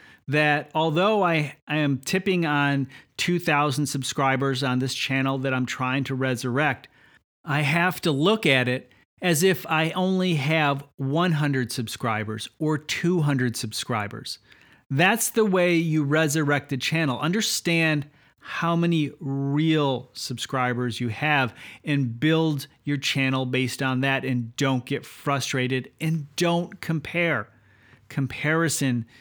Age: 40-59